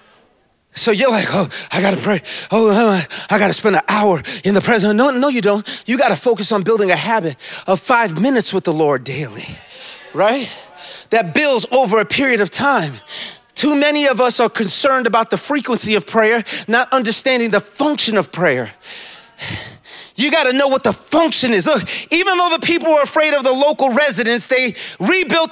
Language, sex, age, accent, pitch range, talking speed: English, male, 30-49, American, 215-305 Hz, 195 wpm